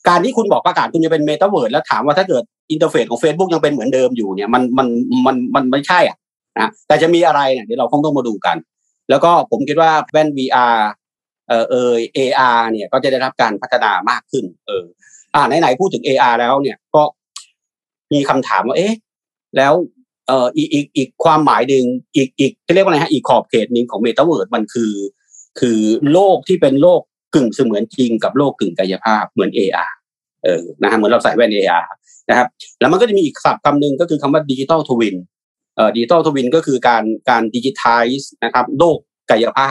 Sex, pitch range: male, 125-165 Hz